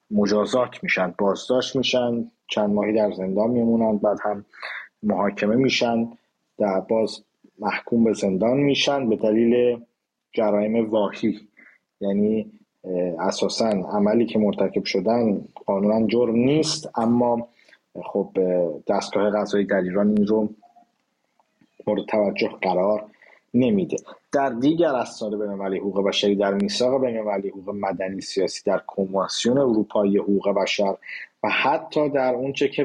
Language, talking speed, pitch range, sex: English, 120 wpm, 100-120 Hz, male